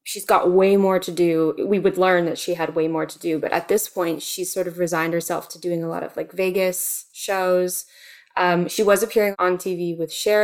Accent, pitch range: American, 175-205 Hz